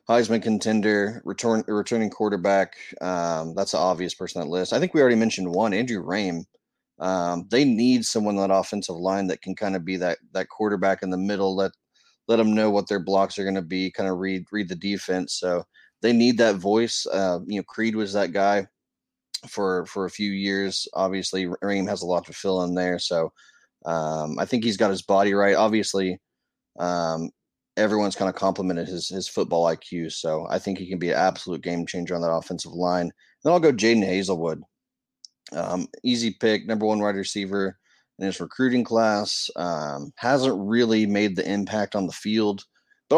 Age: 20-39